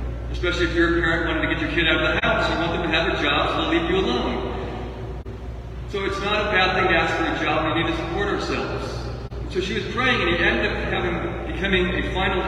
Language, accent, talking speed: English, American, 260 wpm